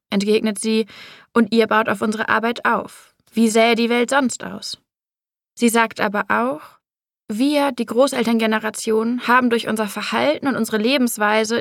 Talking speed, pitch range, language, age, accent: 150 wpm, 215-245 Hz, German, 20-39, German